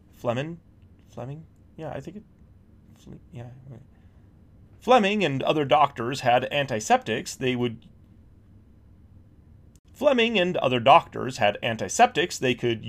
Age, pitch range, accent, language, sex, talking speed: 30-49, 110-180 Hz, American, English, male, 110 wpm